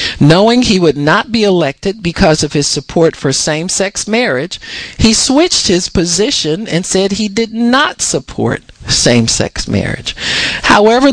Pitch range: 145-215 Hz